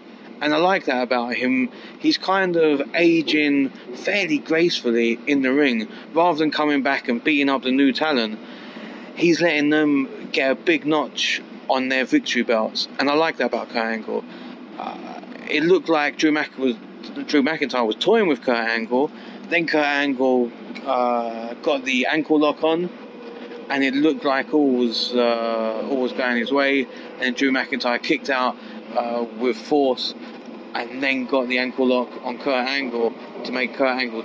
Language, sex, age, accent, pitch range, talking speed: English, male, 30-49, British, 125-170 Hz, 175 wpm